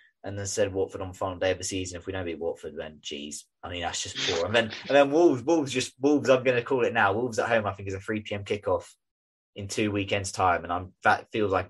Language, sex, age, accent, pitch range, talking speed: English, male, 20-39, British, 95-115 Hz, 280 wpm